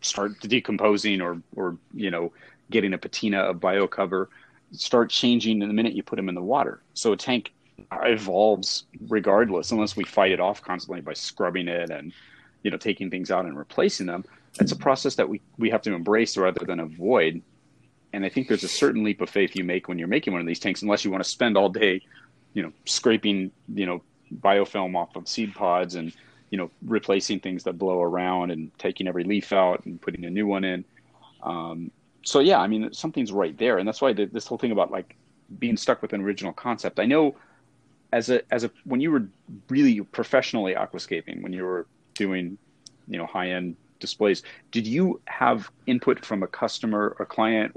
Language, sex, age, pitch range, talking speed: English, male, 30-49, 90-110 Hz, 210 wpm